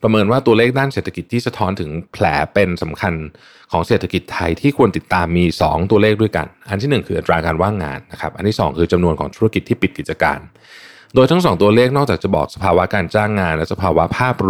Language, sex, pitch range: Thai, male, 85-110 Hz